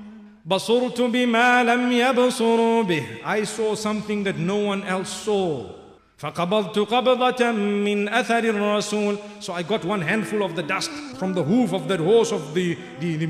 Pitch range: 195-245 Hz